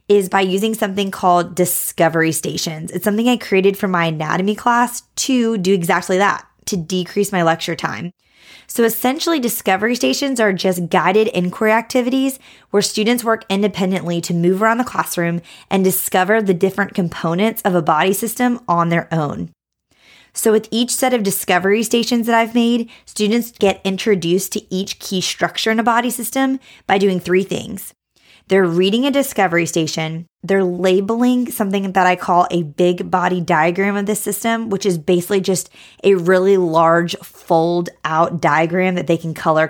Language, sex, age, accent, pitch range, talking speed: English, female, 20-39, American, 175-220 Hz, 170 wpm